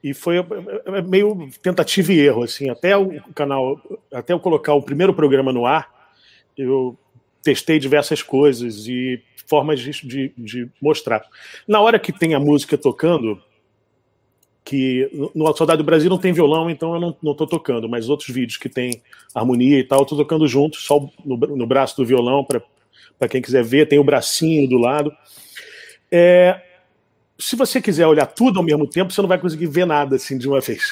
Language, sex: Portuguese, male